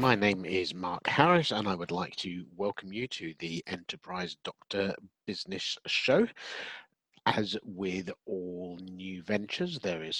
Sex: male